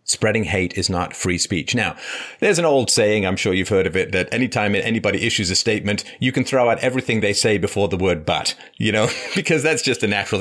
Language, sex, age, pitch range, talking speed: English, male, 40-59, 95-130 Hz, 235 wpm